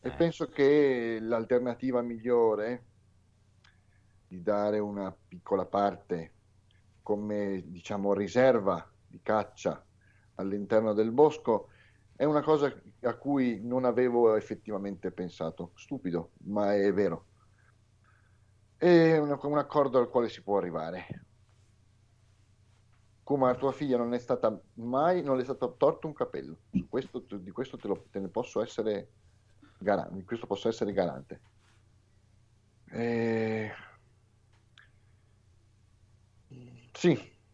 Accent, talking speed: native, 110 wpm